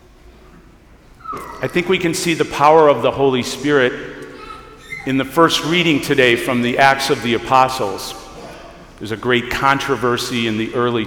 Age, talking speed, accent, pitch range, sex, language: 50-69, 155 wpm, American, 115-145 Hz, male, English